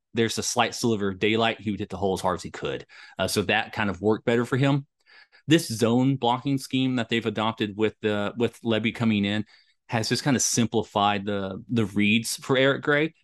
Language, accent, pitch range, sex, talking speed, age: English, American, 100-115 Hz, male, 225 wpm, 30-49